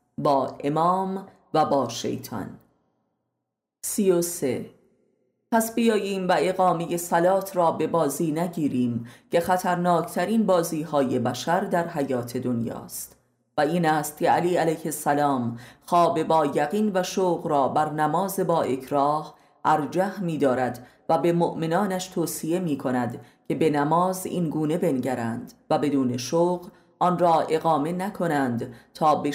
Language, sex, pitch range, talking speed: Persian, female, 140-175 Hz, 135 wpm